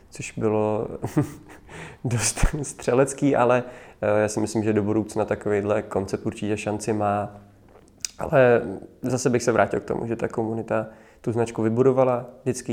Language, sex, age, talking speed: Czech, male, 20-39, 140 wpm